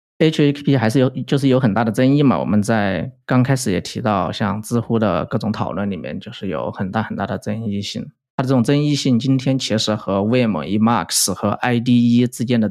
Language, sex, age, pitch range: Chinese, male, 20-39, 105-125 Hz